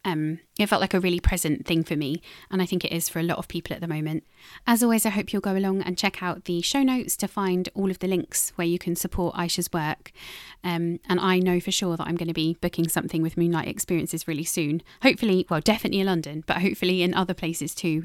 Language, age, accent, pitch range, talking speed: English, 20-39, British, 170-195 Hz, 255 wpm